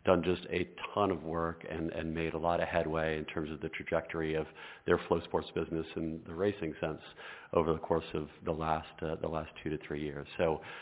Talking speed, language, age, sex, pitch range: 230 wpm, English, 50-69, male, 80-90 Hz